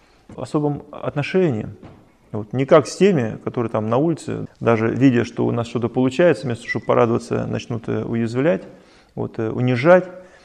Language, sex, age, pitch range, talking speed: Russian, male, 20-39, 115-150 Hz, 155 wpm